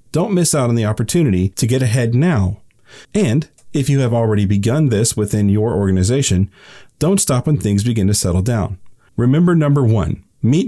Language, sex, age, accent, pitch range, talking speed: English, male, 40-59, American, 100-140 Hz, 180 wpm